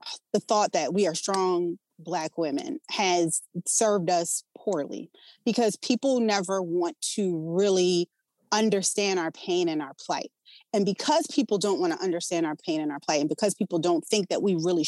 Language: English